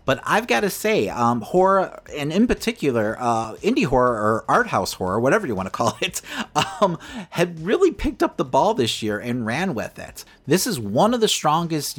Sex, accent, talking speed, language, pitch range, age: male, American, 210 wpm, English, 125-205 Hz, 30-49